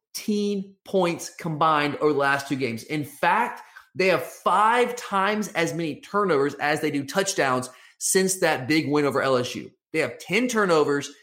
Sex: male